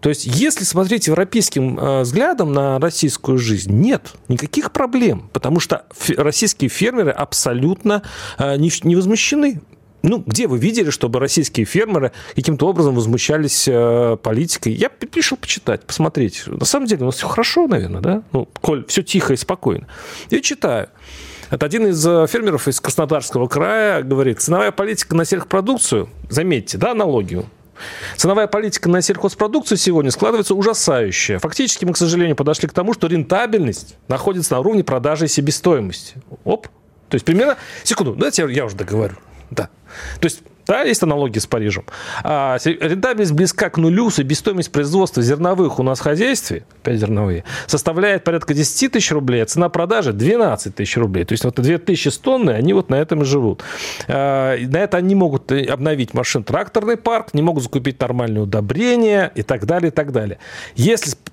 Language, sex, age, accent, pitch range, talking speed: Russian, male, 40-59, native, 130-195 Hz, 160 wpm